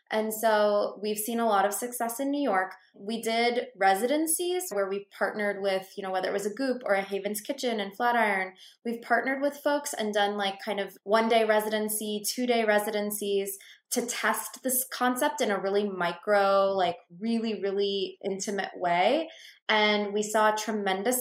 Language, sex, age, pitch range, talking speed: English, female, 20-39, 185-220 Hz, 180 wpm